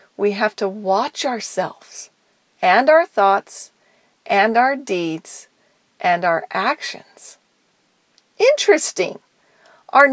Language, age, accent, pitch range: English, 40-59, American, 195-295 Hz